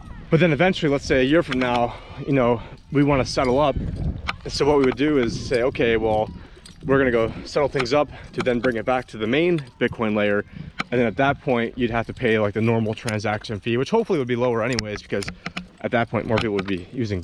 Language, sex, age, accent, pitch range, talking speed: English, male, 30-49, American, 105-125 Hz, 250 wpm